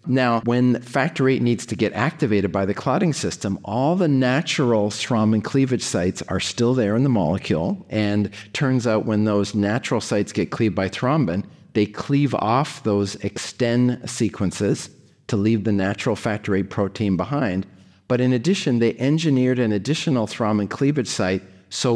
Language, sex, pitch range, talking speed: English, male, 100-125 Hz, 165 wpm